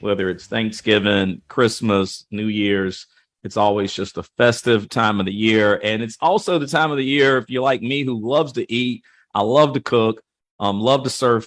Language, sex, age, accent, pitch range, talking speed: English, male, 40-59, American, 105-125 Hz, 205 wpm